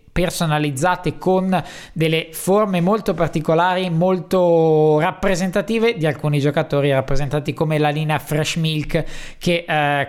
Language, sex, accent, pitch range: Italian, male, native, 145-170 Hz